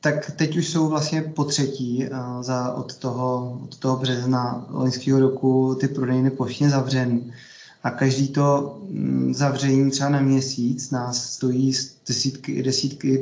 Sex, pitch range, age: male, 130-140 Hz, 20-39